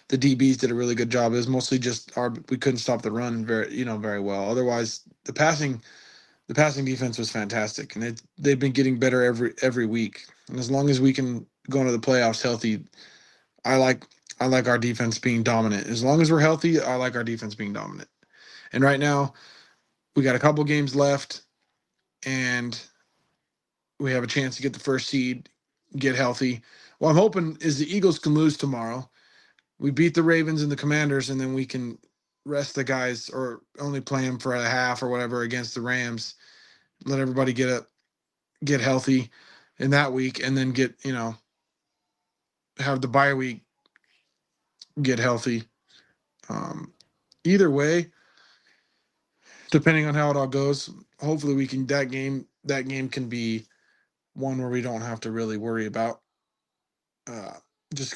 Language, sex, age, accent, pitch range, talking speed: English, male, 20-39, American, 120-140 Hz, 180 wpm